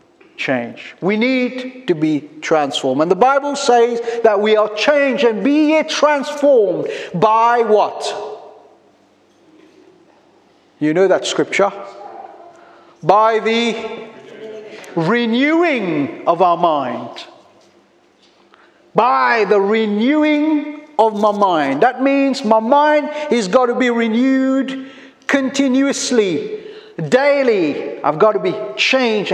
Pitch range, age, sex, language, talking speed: 220-300 Hz, 50-69, male, English, 105 wpm